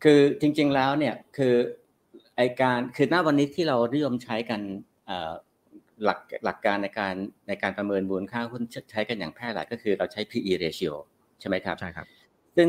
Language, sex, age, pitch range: Thai, male, 60-79, 100-125 Hz